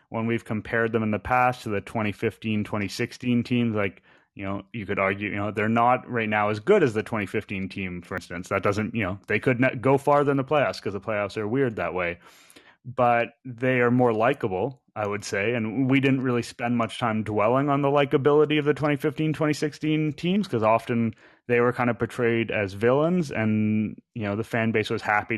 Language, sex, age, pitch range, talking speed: English, male, 30-49, 105-125 Hz, 215 wpm